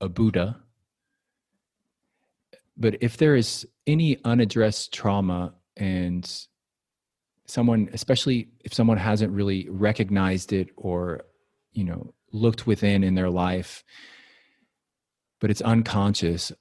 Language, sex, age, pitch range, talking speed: English, male, 30-49, 90-110 Hz, 105 wpm